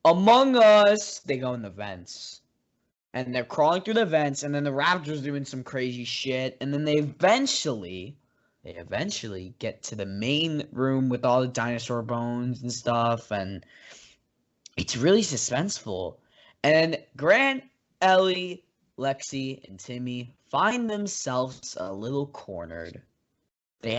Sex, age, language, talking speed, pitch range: male, 10-29, English, 140 wpm, 120-185 Hz